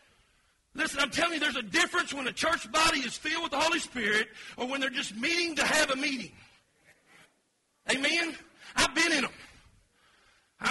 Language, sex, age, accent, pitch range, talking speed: English, male, 40-59, American, 265-330 Hz, 180 wpm